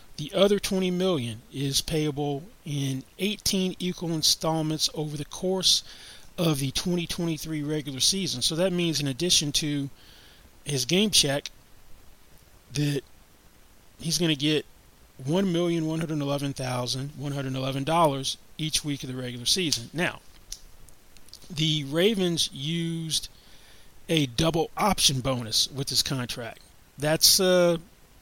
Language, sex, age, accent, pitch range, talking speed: English, male, 30-49, American, 130-165 Hz, 115 wpm